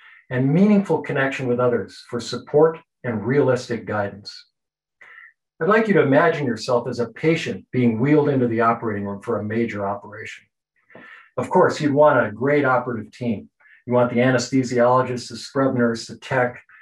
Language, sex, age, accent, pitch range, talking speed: English, male, 50-69, American, 120-145 Hz, 165 wpm